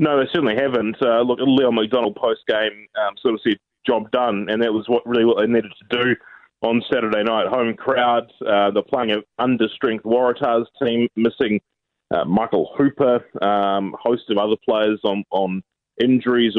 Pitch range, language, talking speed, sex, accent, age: 100-120 Hz, English, 175 wpm, male, Australian, 20-39